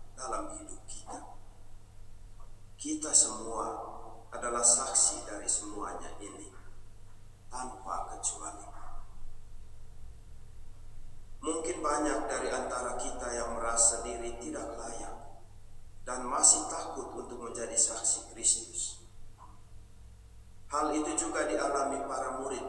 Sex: male